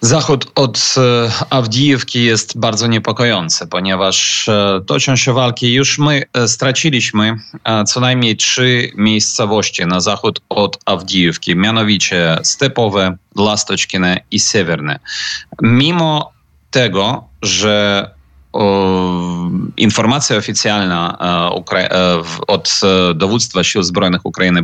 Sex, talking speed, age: male, 110 wpm, 30-49